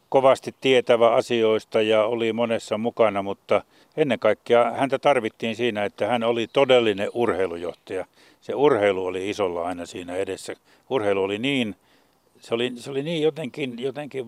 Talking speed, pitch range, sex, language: 145 wpm, 105-125 Hz, male, Finnish